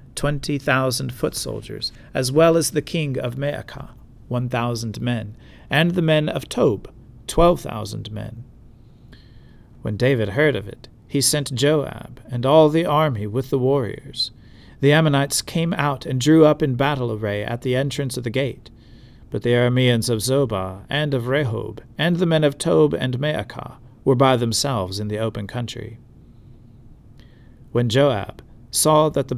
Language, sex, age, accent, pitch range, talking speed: English, male, 40-59, American, 120-145 Hz, 155 wpm